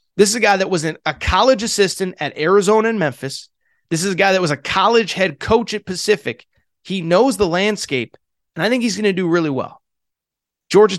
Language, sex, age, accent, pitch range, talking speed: English, male, 30-49, American, 160-215 Hz, 215 wpm